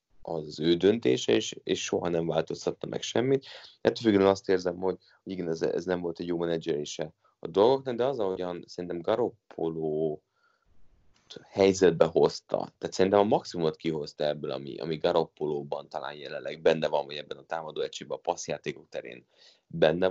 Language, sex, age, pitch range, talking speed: Hungarian, male, 30-49, 85-125 Hz, 160 wpm